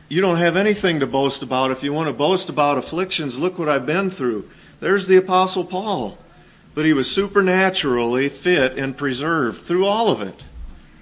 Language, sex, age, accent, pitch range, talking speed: English, male, 50-69, American, 130-180 Hz, 185 wpm